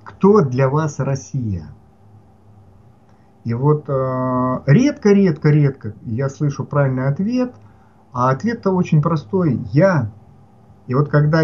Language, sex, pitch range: Russian, male, 110-145 Hz